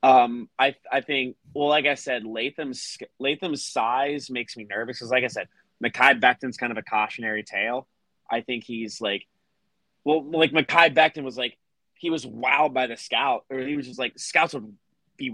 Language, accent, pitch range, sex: English, American, 125-165 Hz, male